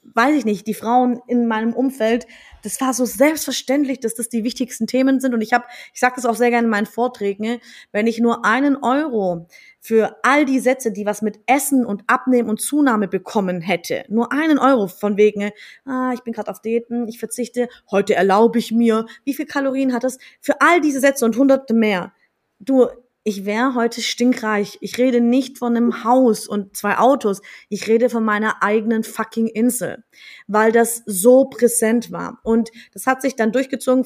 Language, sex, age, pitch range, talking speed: German, female, 20-39, 210-250 Hz, 195 wpm